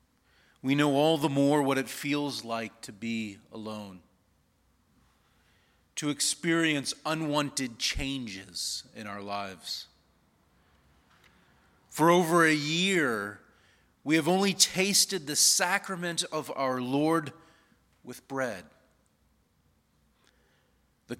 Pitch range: 115-165 Hz